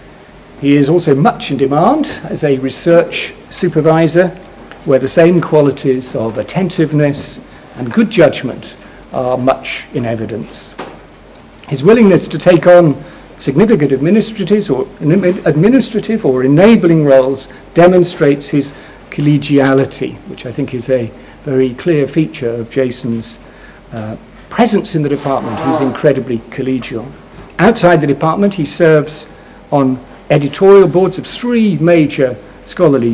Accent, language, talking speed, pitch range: British, English, 120 wpm, 135-175 Hz